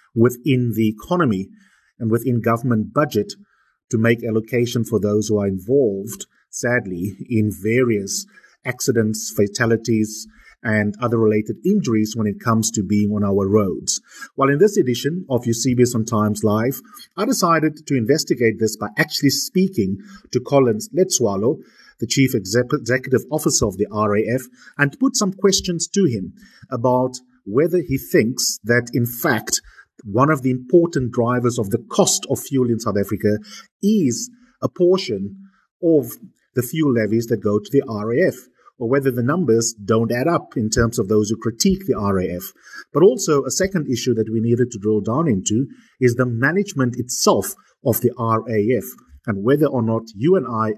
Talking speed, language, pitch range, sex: 165 wpm, English, 110-140 Hz, male